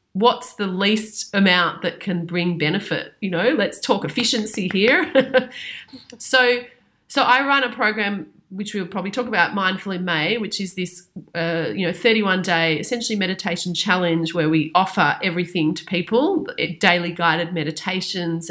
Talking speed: 155 wpm